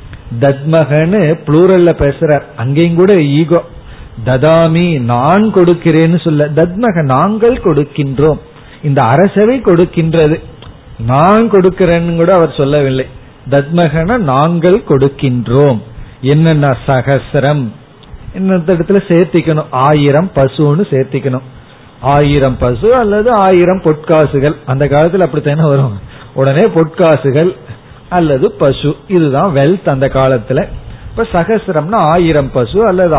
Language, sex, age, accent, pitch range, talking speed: Tamil, male, 40-59, native, 135-180 Hz, 60 wpm